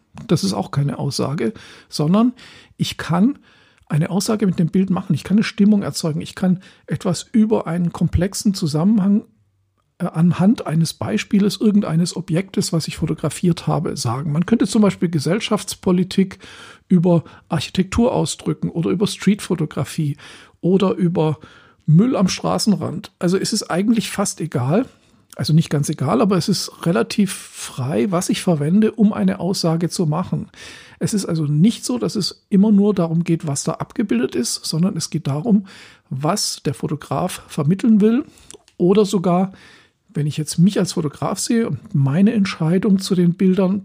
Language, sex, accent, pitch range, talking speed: German, male, German, 160-205 Hz, 155 wpm